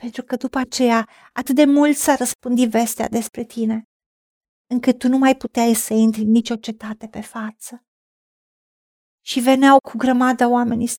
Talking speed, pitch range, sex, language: 160 wpm, 220-260 Hz, female, Romanian